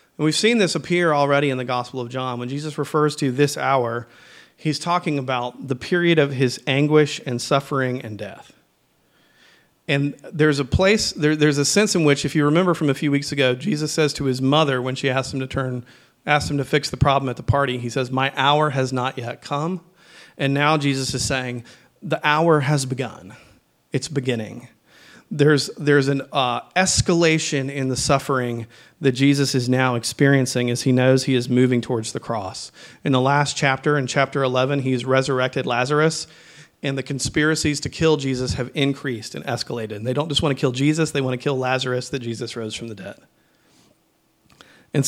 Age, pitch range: 40-59, 125-150 Hz